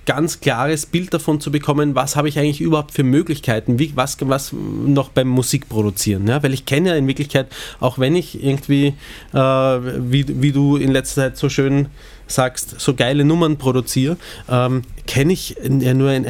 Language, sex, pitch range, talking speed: German, male, 120-150 Hz, 190 wpm